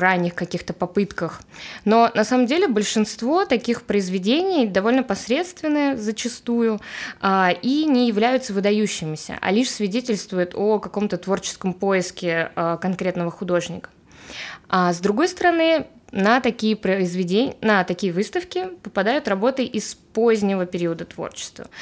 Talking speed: 120 wpm